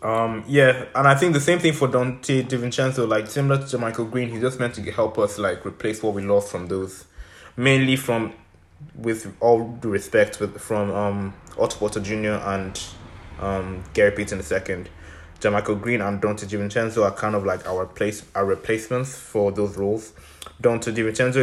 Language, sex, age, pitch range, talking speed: English, male, 20-39, 100-120 Hz, 185 wpm